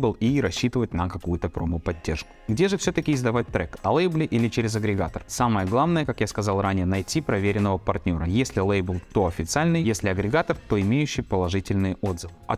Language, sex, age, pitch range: Russian, male, 20-39, 95-140 Hz